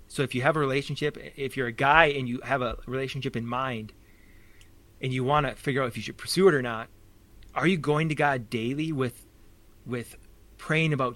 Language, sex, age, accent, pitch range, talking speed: English, male, 30-49, American, 115-150 Hz, 215 wpm